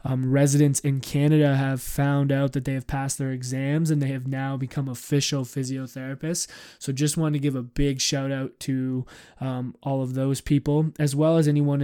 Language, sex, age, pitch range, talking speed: English, male, 20-39, 130-140 Hz, 200 wpm